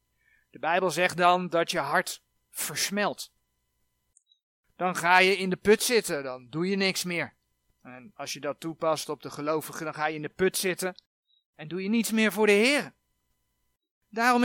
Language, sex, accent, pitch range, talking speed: Dutch, male, Dutch, 155-215 Hz, 185 wpm